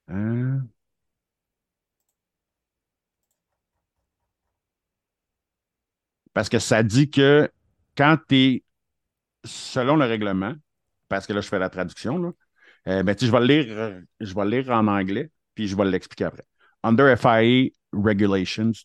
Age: 50-69